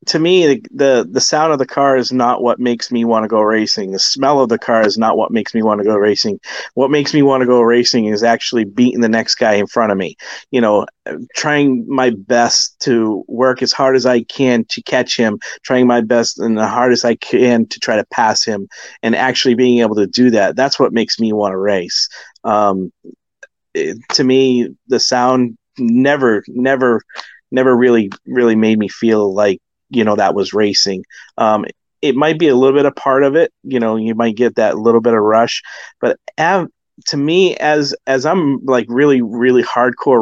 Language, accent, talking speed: English, American, 210 wpm